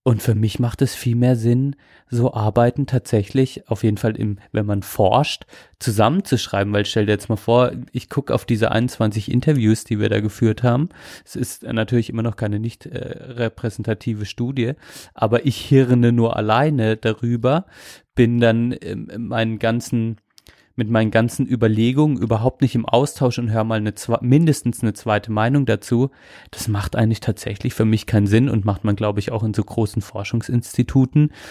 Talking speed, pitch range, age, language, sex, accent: 180 wpm, 110-125 Hz, 30-49, German, male, German